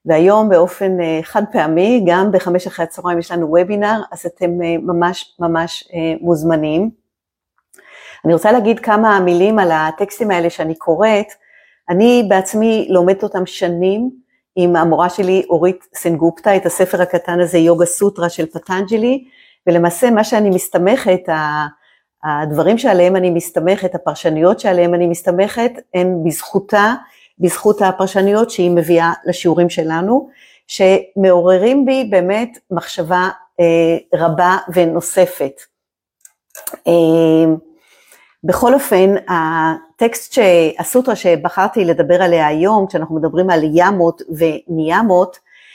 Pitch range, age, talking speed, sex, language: 170-205 Hz, 50-69, 110 wpm, female, Hebrew